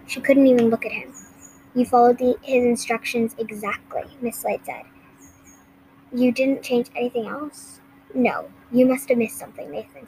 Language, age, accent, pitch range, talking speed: English, 10-29, American, 235-265 Hz, 160 wpm